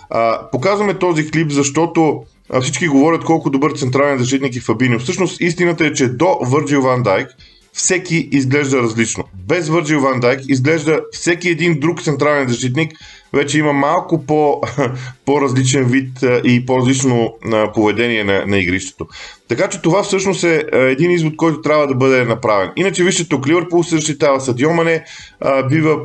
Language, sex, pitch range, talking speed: Bulgarian, male, 125-155 Hz, 150 wpm